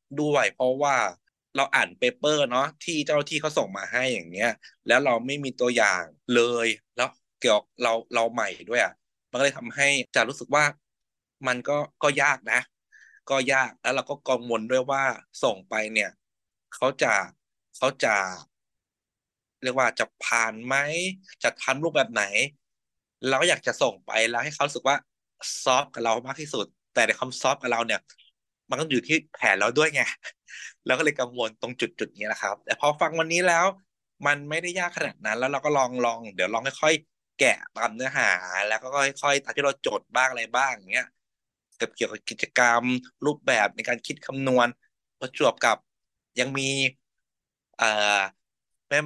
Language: Thai